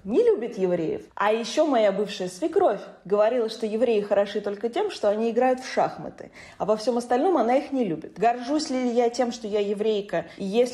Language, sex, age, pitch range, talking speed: Russian, female, 20-39, 190-245 Hz, 195 wpm